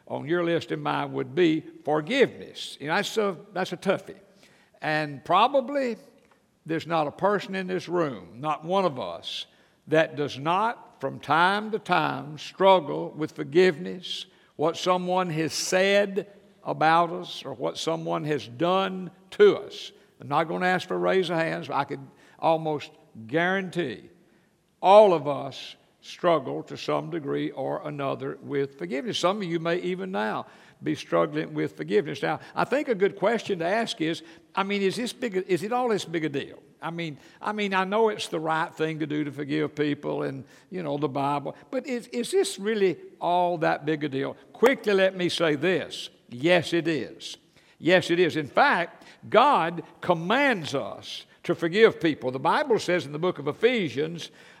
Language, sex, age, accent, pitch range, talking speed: English, male, 60-79, American, 155-195 Hz, 180 wpm